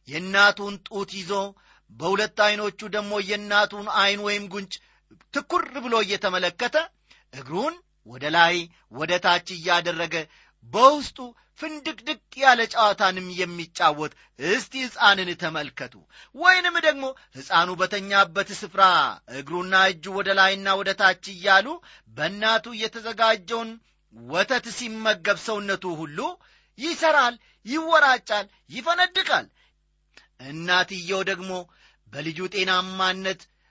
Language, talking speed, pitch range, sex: Amharic, 90 wpm, 180-235 Hz, male